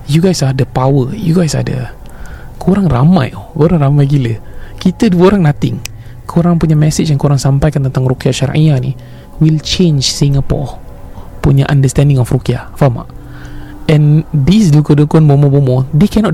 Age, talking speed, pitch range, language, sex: 20-39, 155 wpm, 130-155 Hz, Malay, male